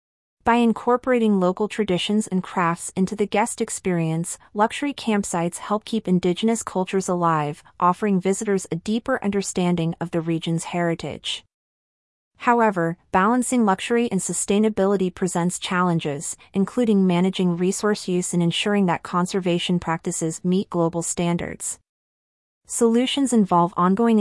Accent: American